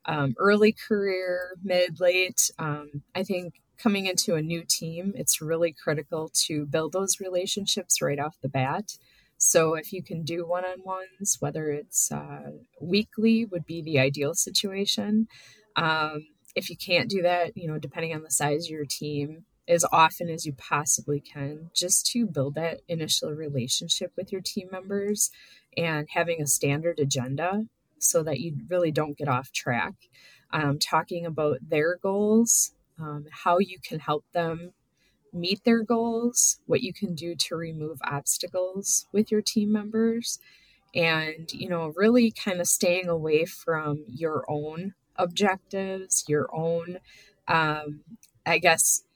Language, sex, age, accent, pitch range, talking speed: English, female, 20-39, American, 155-195 Hz, 155 wpm